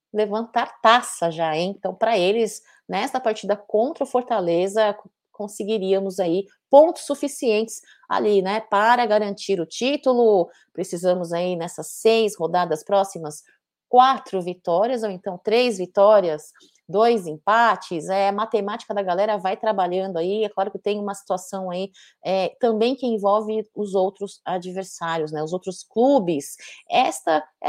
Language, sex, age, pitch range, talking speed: Portuguese, female, 30-49, 190-245 Hz, 140 wpm